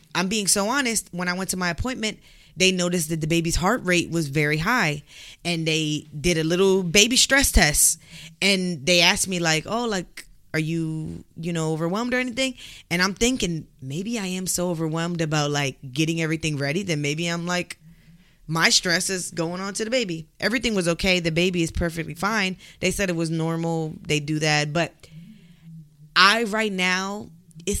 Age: 20-39